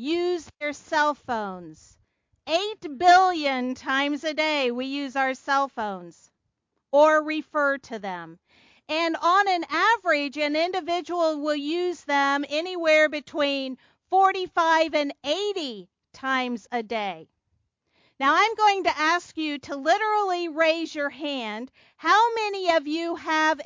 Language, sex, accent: English, female, American